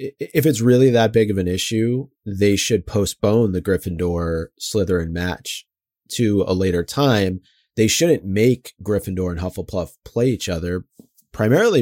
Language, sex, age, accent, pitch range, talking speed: English, male, 30-49, American, 95-120 Hz, 140 wpm